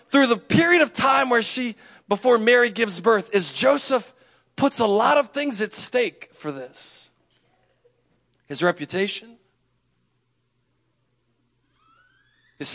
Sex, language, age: male, English, 40-59